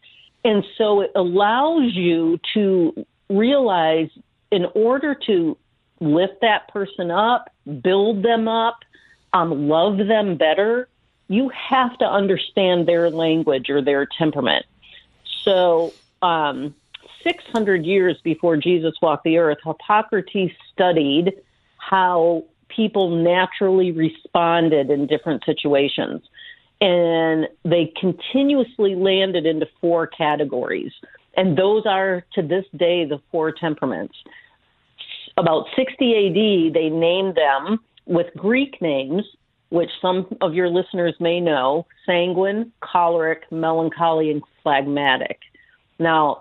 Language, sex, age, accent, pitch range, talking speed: English, female, 50-69, American, 160-200 Hz, 110 wpm